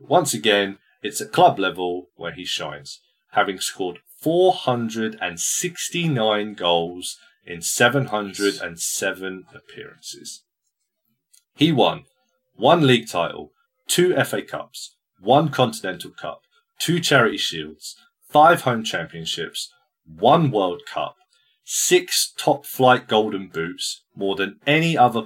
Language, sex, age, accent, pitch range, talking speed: English, male, 30-49, British, 95-155 Hz, 105 wpm